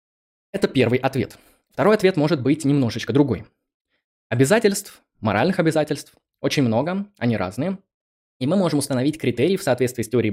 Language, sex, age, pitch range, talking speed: Russian, male, 20-39, 120-170 Hz, 145 wpm